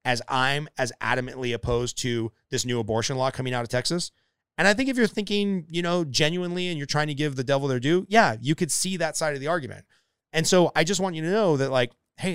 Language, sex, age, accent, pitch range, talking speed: English, male, 30-49, American, 120-170 Hz, 255 wpm